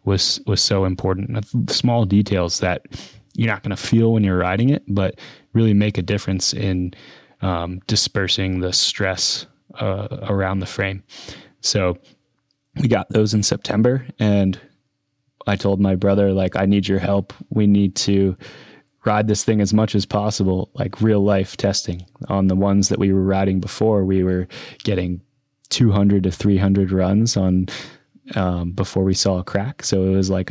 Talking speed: 170 wpm